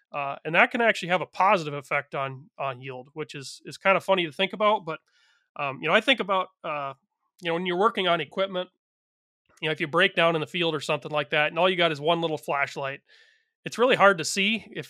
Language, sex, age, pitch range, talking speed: English, male, 30-49, 150-185 Hz, 255 wpm